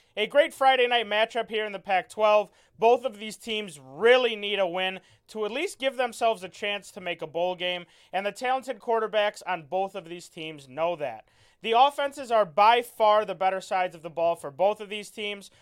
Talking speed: 215 wpm